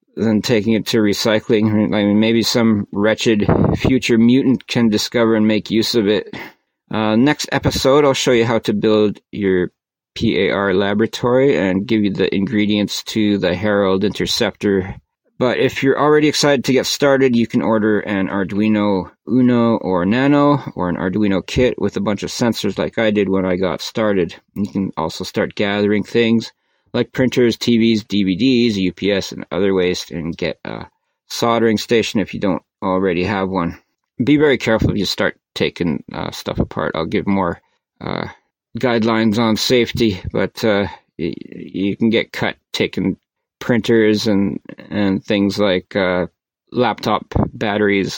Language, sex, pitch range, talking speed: English, male, 100-120 Hz, 160 wpm